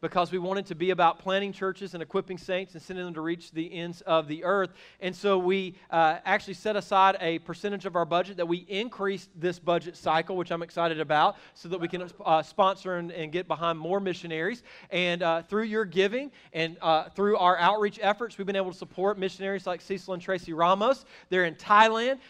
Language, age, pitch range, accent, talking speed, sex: English, 40-59, 175-205 Hz, American, 215 wpm, male